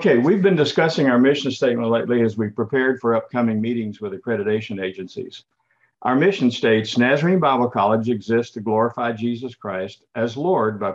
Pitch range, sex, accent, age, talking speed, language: 110-140 Hz, male, American, 50-69, 170 wpm, English